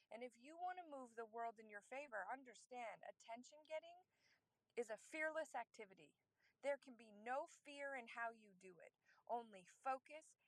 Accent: American